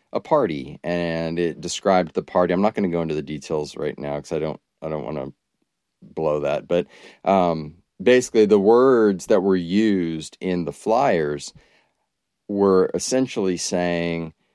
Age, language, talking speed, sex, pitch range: 30-49, English, 165 wpm, male, 80-95 Hz